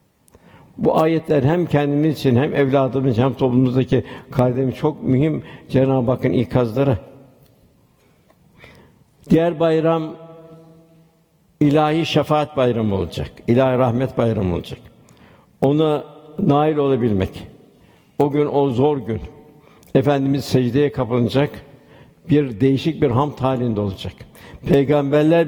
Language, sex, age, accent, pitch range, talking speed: Turkish, male, 60-79, native, 125-150 Hz, 100 wpm